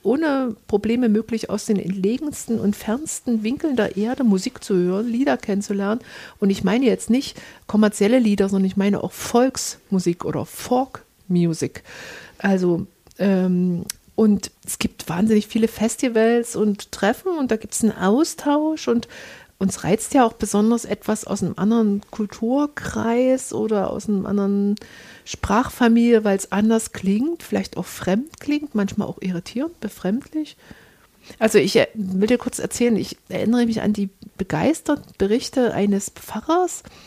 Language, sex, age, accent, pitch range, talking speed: German, female, 50-69, German, 195-240 Hz, 145 wpm